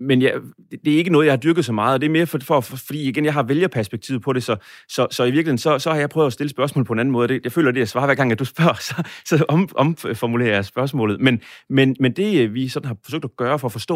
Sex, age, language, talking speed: male, 30-49, Danish, 315 wpm